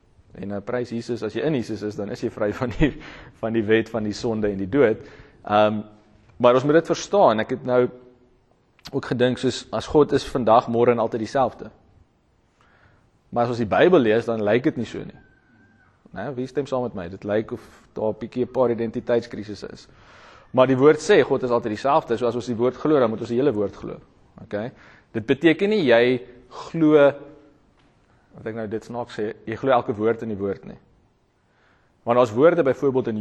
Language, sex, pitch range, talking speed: English, male, 110-130 Hz, 210 wpm